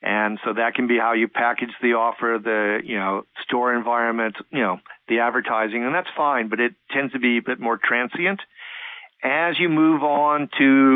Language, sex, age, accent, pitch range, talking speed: English, male, 50-69, American, 115-130 Hz, 195 wpm